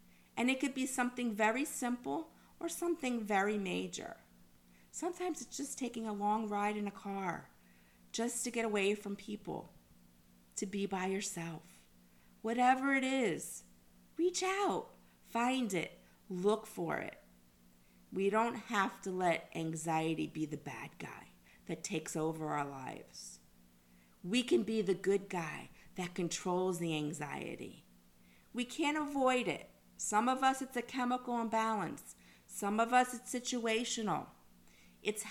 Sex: female